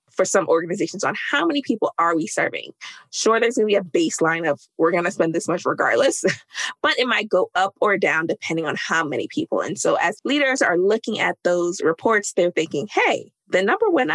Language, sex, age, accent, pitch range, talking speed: English, female, 20-39, American, 175-270 Hz, 220 wpm